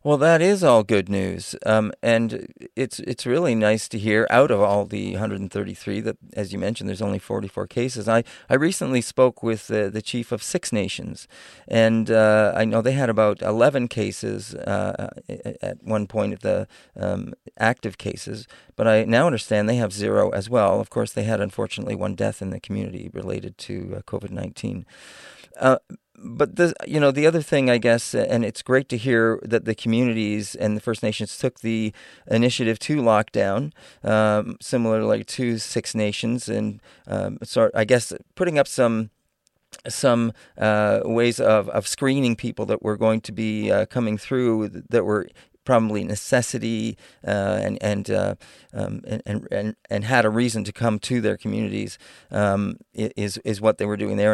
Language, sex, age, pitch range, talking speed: English, male, 40-59, 105-120 Hz, 180 wpm